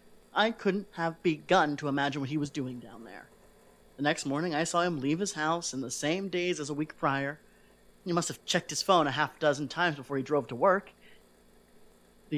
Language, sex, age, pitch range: English, male, 30-49, 145-185 Hz